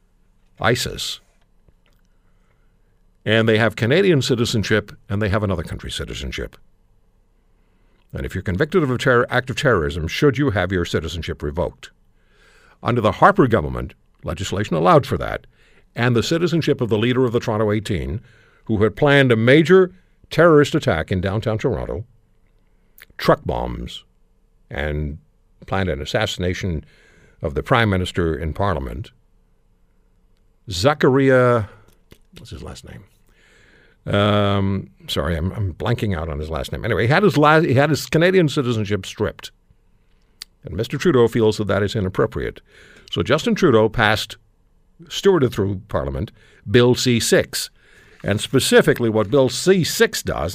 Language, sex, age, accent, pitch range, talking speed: English, male, 60-79, American, 90-125 Hz, 140 wpm